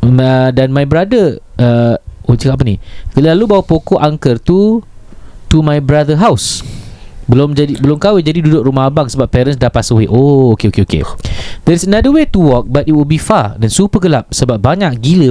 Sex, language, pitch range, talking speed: male, Malay, 120-185 Hz, 205 wpm